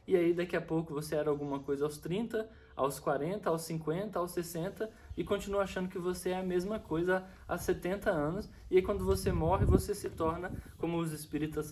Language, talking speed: Portuguese, 205 wpm